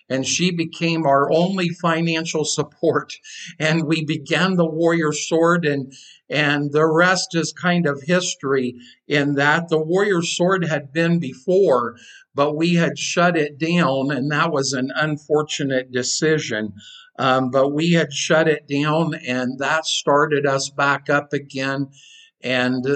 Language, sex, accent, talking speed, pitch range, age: English, male, American, 145 wpm, 130-155 Hz, 50-69